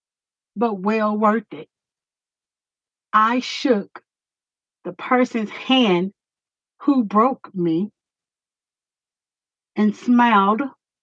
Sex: female